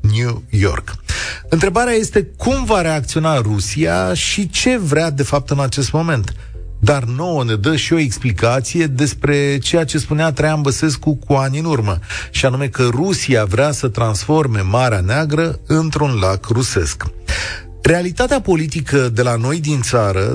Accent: native